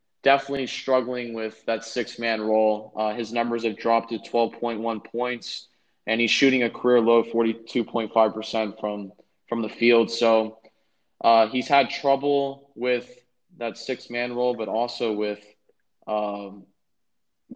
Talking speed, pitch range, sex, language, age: 130 wpm, 110-125 Hz, male, English, 20-39